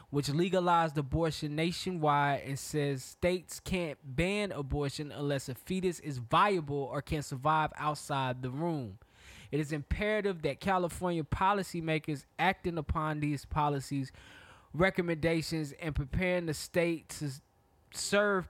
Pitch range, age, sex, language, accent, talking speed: 145-185 Hz, 20-39, male, English, American, 125 wpm